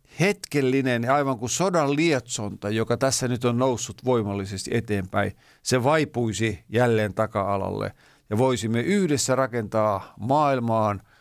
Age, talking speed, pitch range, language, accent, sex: 50-69, 110 wpm, 105-135 Hz, Finnish, native, male